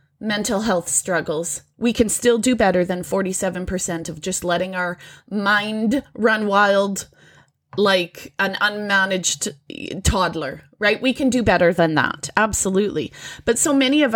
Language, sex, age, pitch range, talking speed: English, female, 20-39, 175-245 Hz, 140 wpm